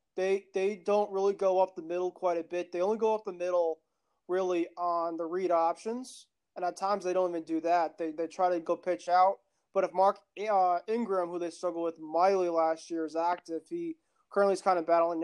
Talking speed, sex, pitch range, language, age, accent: 225 wpm, male, 165-190 Hz, English, 20-39, American